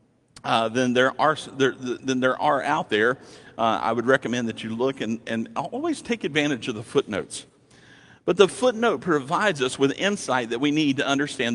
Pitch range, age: 120-155 Hz, 50-69